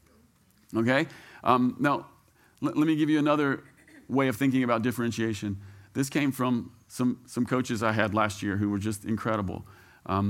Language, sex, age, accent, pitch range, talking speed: English, male, 40-59, American, 115-160 Hz, 170 wpm